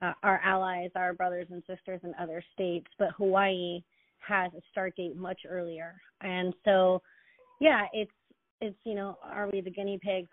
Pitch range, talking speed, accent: 180-205 Hz, 175 wpm, American